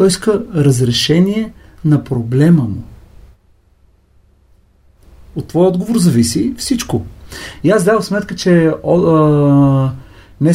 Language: Bulgarian